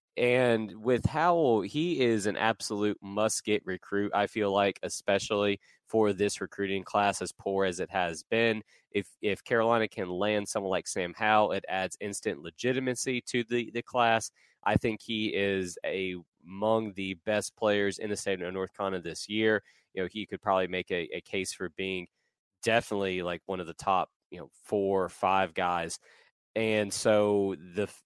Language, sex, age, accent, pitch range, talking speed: English, male, 20-39, American, 95-115 Hz, 180 wpm